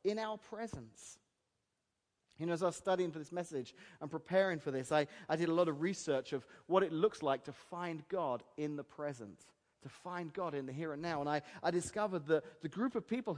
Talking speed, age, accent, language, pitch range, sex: 230 wpm, 30-49, British, English, 150-210 Hz, male